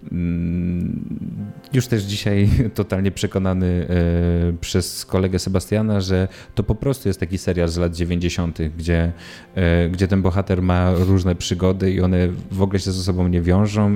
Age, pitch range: 30-49, 85-100 Hz